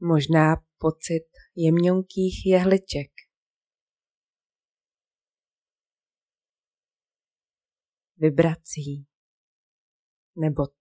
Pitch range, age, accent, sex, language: 160-240 Hz, 30-49, native, female, Czech